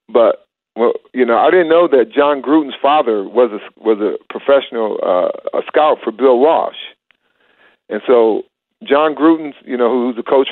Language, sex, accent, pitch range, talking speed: English, male, American, 120-155 Hz, 175 wpm